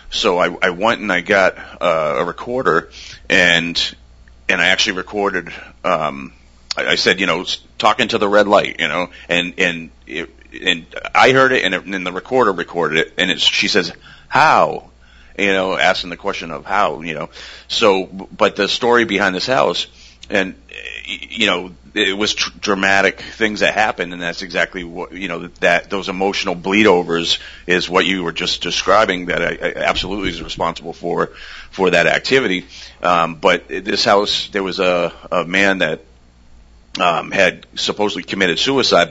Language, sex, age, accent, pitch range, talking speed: English, male, 40-59, American, 85-100 Hz, 180 wpm